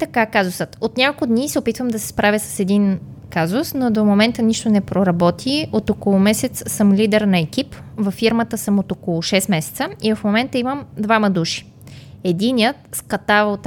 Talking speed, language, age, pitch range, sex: 185 wpm, Bulgarian, 20-39, 190-235 Hz, female